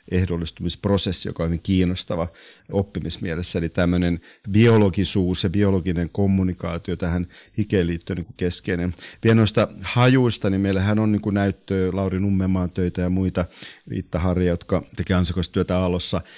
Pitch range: 85-100 Hz